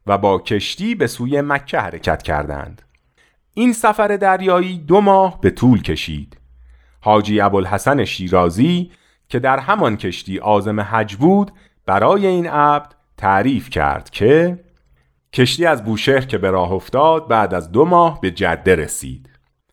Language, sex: Persian, male